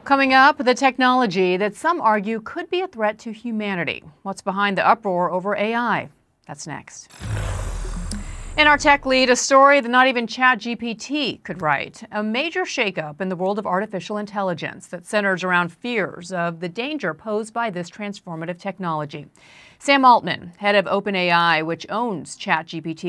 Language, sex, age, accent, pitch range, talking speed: English, female, 40-59, American, 170-230 Hz, 165 wpm